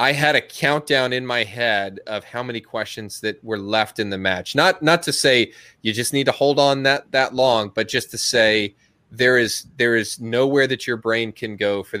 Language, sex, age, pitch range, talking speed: English, male, 20-39, 105-125 Hz, 225 wpm